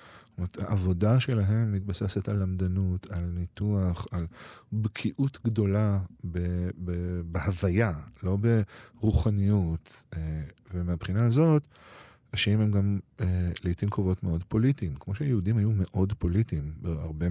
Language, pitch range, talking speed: Hebrew, 90-110 Hz, 95 wpm